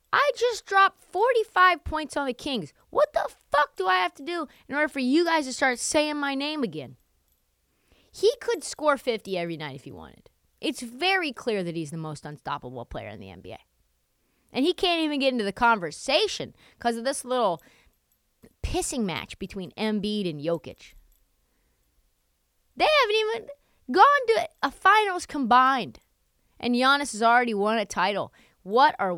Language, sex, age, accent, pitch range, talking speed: English, female, 20-39, American, 190-290 Hz, 170 wpm